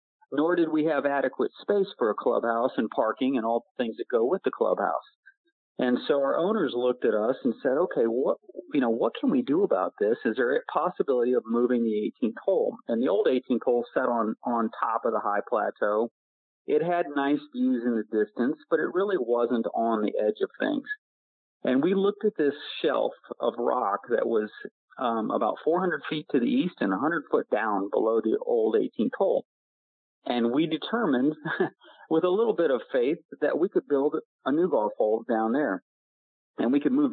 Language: English